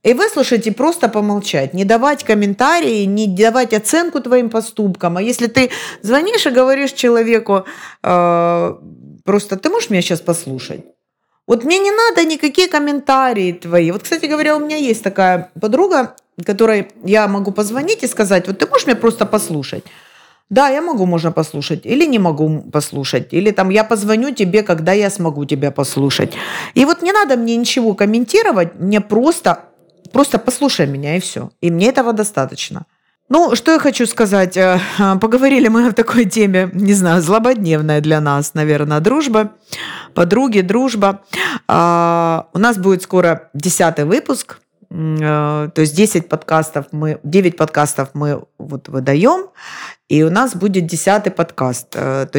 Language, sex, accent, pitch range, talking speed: Russian, female, native, 165-240 Hz, 155 wpm